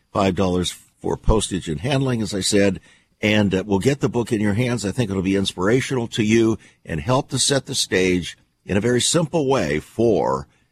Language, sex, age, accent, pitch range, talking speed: English, male, 50-69, American, 100-130 Hz, 195 wpm